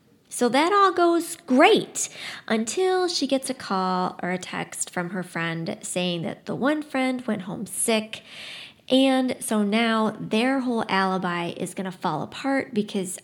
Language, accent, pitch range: English, American, 185-250 Hz